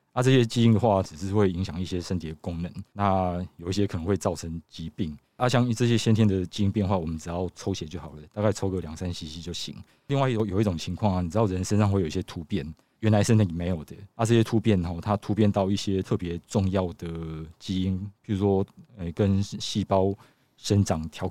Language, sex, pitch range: Chinese, male, 85-105 Hz